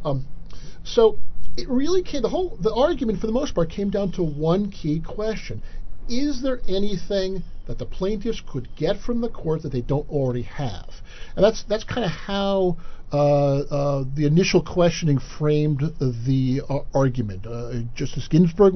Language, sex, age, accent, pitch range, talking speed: English, male, 50-69, American, 115-165 Hz, 175 wpm